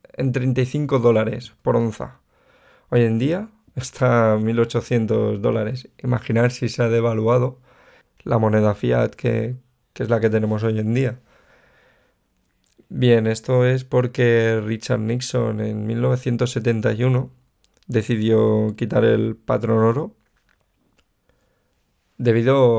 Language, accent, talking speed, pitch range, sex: Spanish, Spanish, 115 wpm, 110-125 Hz, male